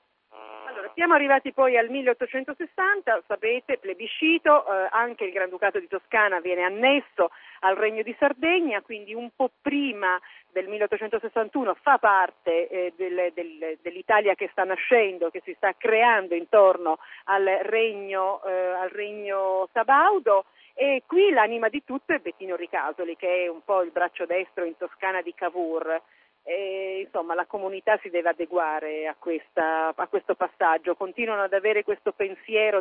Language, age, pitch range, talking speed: Italian, 40-59, 175-235 Hz, 150 wpm